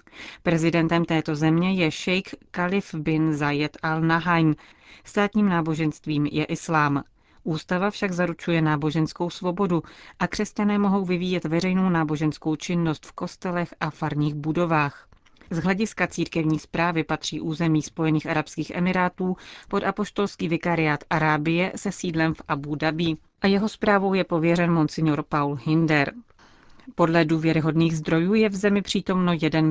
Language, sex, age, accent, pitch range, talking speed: Czech, female, 40-59, native, 155-185 Hz, 130 wpm